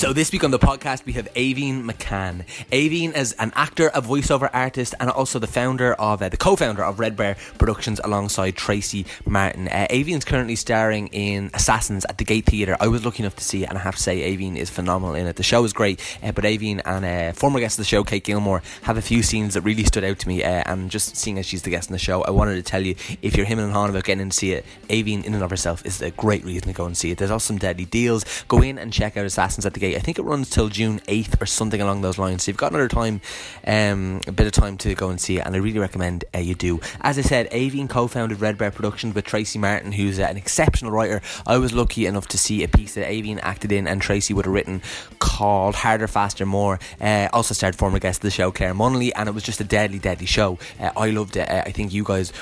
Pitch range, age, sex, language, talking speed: 95-110 Hz, 20-39, male, English, 270 wpm